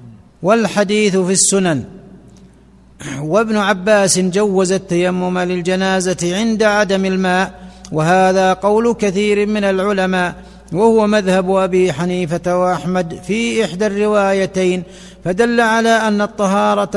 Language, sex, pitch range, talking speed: Arabic, male, 180-210 Hz, 100 wpm